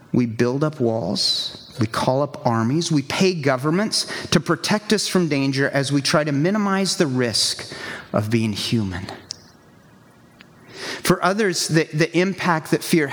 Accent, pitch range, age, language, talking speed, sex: American, 125-165 Hz, 40-59, English, 150 wpm, male